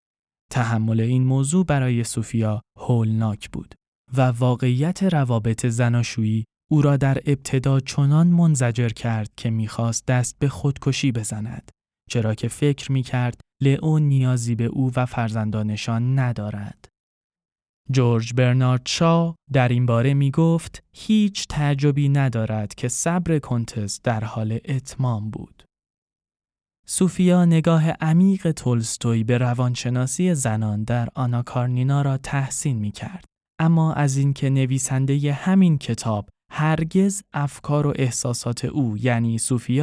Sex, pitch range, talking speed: male, 115-145 Hz, 120 wpm